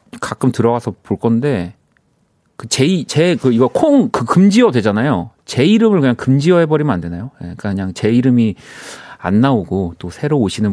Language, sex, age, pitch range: Korean, male, 40-59, 95-130 Hz